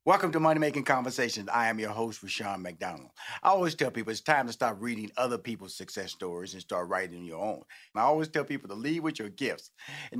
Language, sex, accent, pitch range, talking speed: English, male, American, 110-150 Hz, 235 wpm